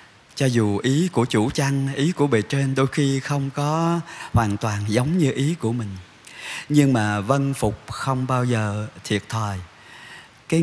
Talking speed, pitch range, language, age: 175 wpm, 105-140 Hz, Vietnamese, 20-39